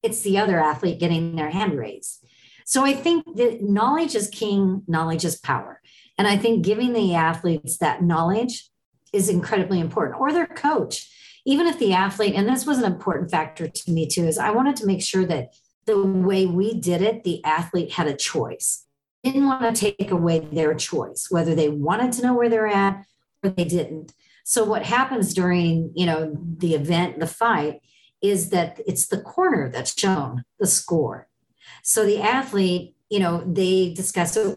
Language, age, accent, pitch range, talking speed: English, 50-69, American, 165-210 Hz, 185 wpm